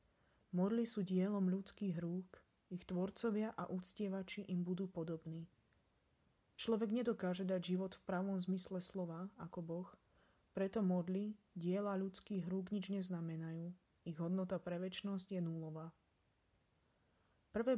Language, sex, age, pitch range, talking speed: Slovak, female, 20-39, 175-195 Hz, 120 wpm